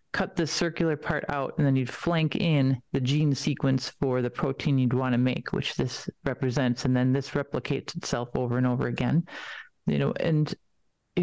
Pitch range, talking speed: 135-160 Hz, 190 wpm